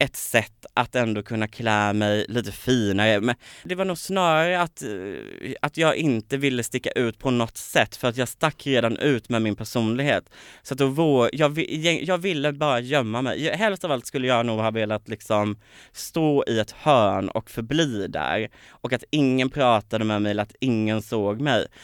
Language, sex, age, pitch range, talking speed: Swedish, male, 20-39, 110-135 Hz, 195 wpm